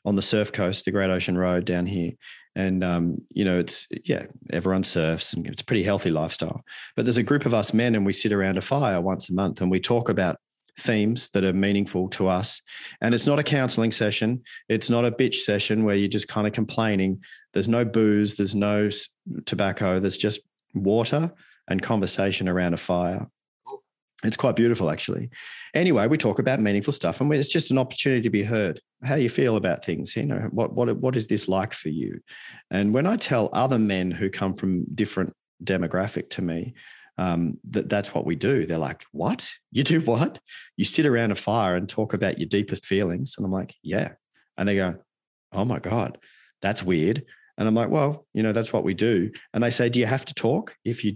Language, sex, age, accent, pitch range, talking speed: English, male, 40-59, Australian, 95-120 Hz, 215 wpm